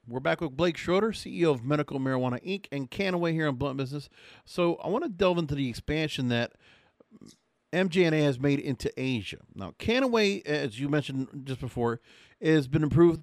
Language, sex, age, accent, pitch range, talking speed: English, male, 50-69, American, 130-170 Hz, 180 wpm